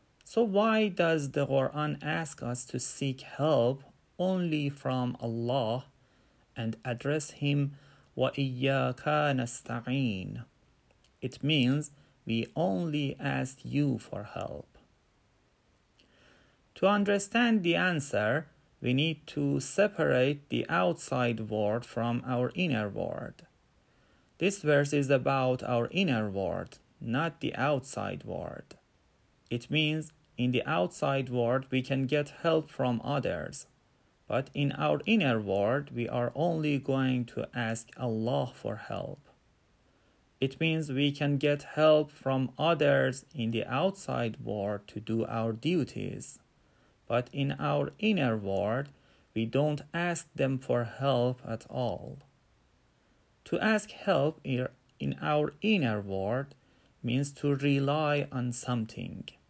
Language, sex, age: Persian, male, 40-59